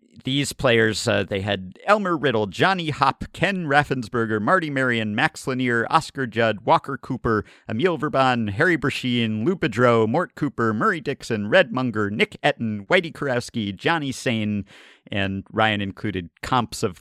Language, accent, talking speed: English, American, 150 wpm